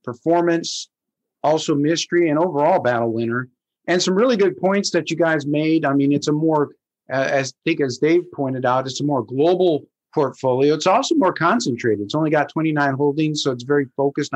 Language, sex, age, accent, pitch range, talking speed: English, male, 50-69, American, 140-175 Hz, 190 wpm